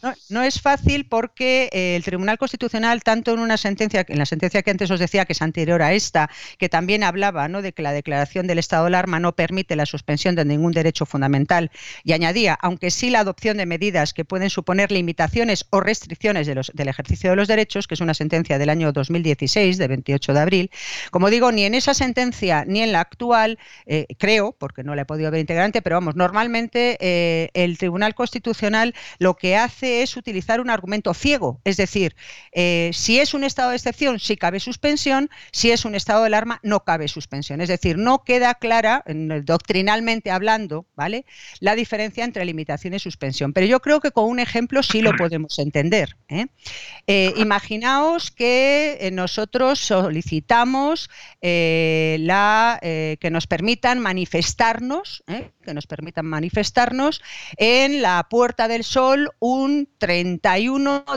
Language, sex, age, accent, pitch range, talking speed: Spanish, female, 40-59, Spanish, 165-235 Hz, 175 wpm